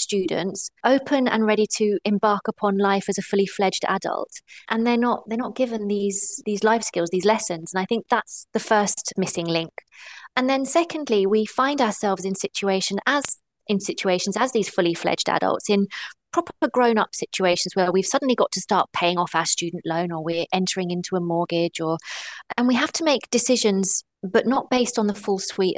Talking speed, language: 195 wpm, English